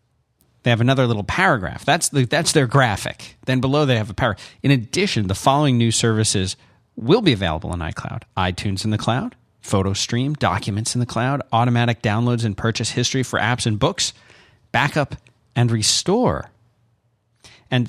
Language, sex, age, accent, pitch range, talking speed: English, male, 40-59, American, 105-130 Hz, 170 wpm